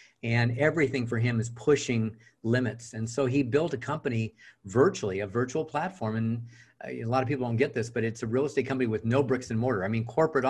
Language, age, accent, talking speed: English, 50-69, American, 225 wpm